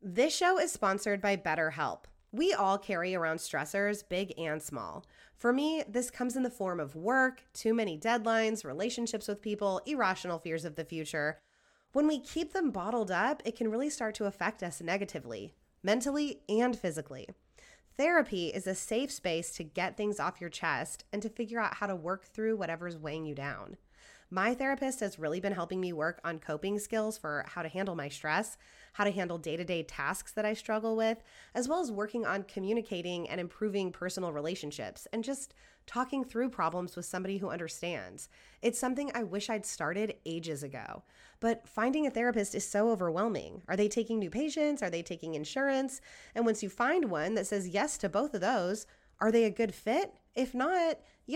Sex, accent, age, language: female, American, 20-39, English